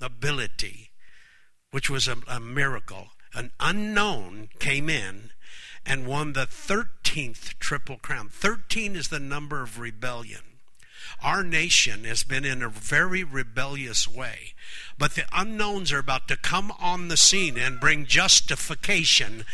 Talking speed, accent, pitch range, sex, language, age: 135 wpm, American, 140-200 Hz, male, English, 60-79